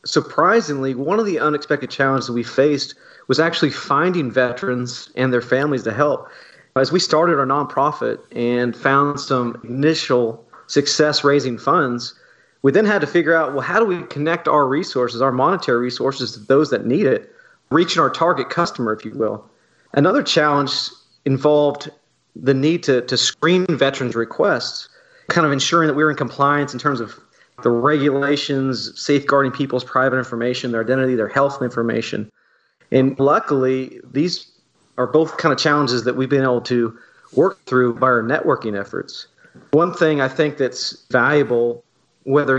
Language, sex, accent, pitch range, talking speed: English, male, American, 125-145 Hz, 165 wpm